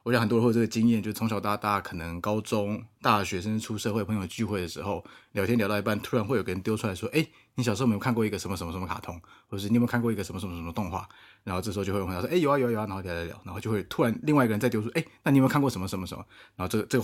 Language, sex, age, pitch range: Chinese, male, 20-39, 95-115 Hz